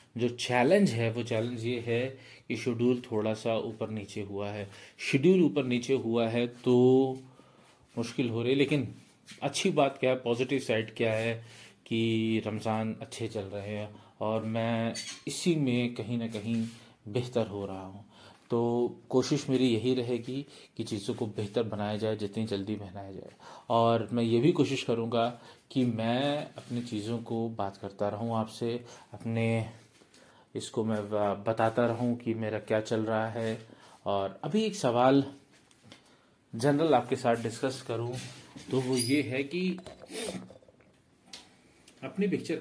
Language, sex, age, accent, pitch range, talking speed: Hindi, male, 30-49, native, 110-125 Hz, 150 wpm